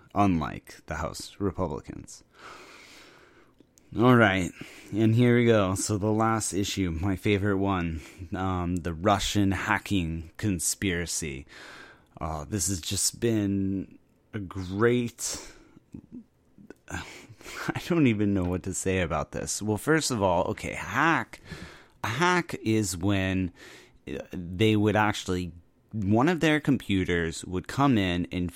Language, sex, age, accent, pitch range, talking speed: English, male, 30-49, American, 90-110 Hz, 125 wpm